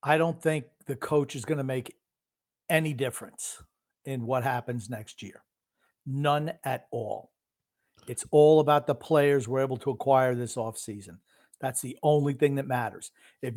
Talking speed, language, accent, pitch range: 165 wpm, English, American, 125-155 Hz